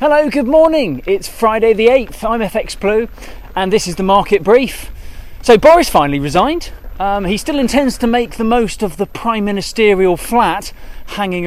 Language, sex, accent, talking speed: English, male, British, 180 wpm